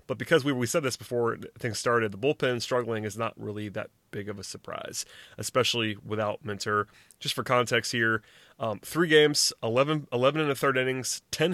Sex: male